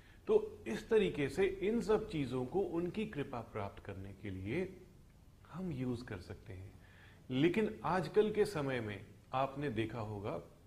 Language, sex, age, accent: Hindi, male, 30-49, native